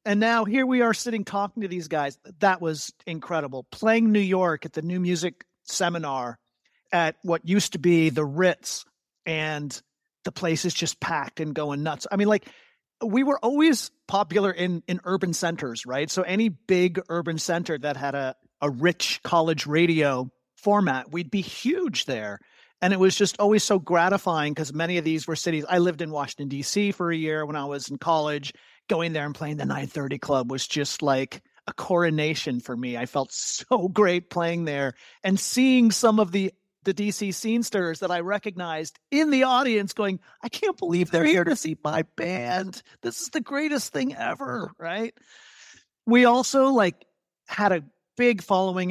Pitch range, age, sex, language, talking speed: 155-205 Hz, 40-59, male, English, 185 wpm